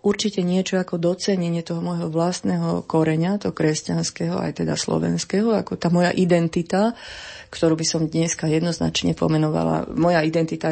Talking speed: 140 wpm